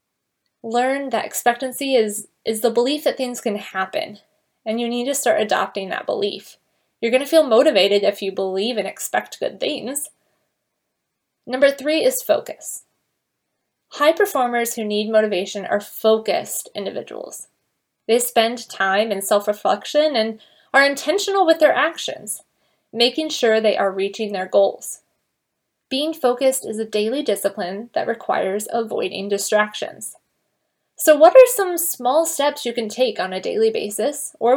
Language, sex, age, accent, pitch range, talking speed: English, female, 20-39, American, 210-300 Hz, 150 wpm